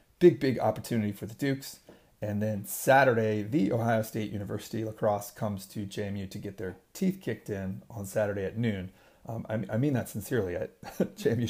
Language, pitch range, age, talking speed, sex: English, 105-130 Hz, 40-59, 175 wpm, male